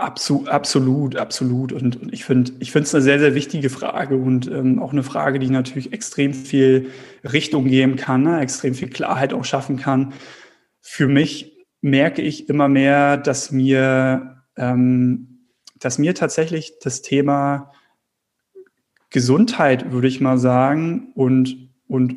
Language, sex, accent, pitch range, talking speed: German, male, German, 130-150 Hz, 145 wpm